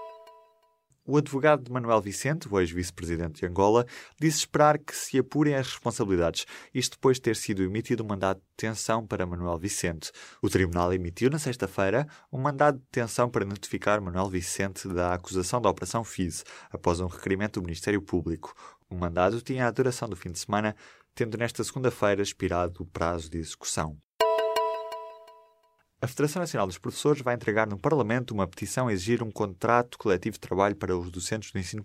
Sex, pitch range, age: male, 95-125 Hz, 20-39